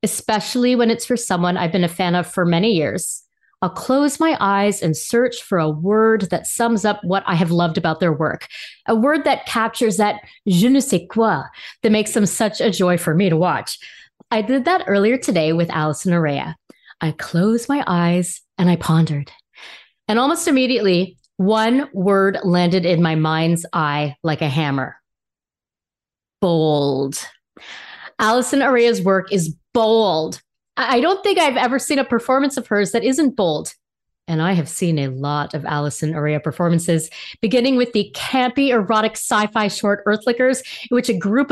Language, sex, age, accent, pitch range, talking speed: English, female, 30-49, American, 170-235 Hz, 175 wpm